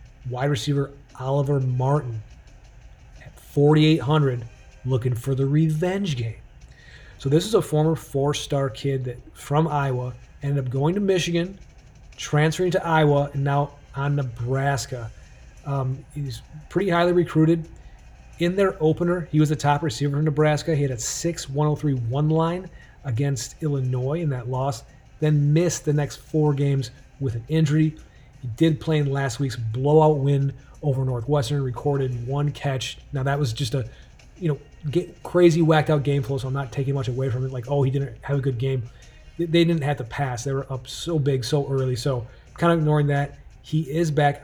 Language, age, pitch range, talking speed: English, 30-49, 130-155 Hz, 175 wpm